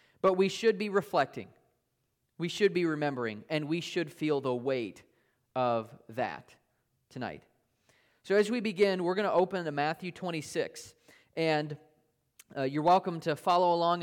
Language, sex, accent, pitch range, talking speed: English, male, American, 155-215 Hz, 155 wpm